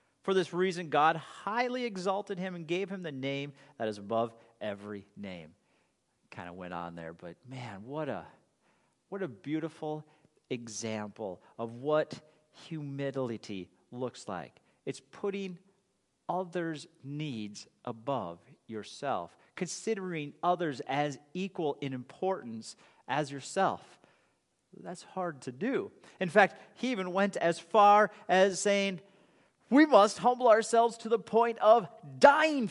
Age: 40-59